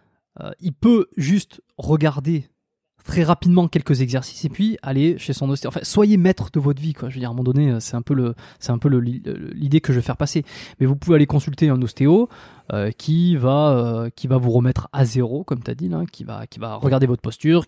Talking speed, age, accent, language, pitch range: 245 wpm, 20-39, French, French, 130-165 Hz